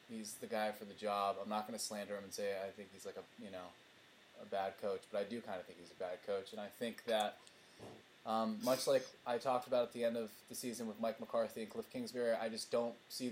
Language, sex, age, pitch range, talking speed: English, male, 20-39, 110-130 Hz, 270 wpm